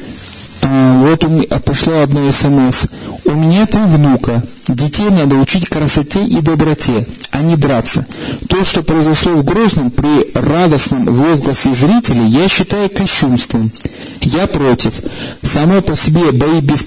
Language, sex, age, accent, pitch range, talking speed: Russian, male, 40-59, native, 125-155 Hz, 135 wpm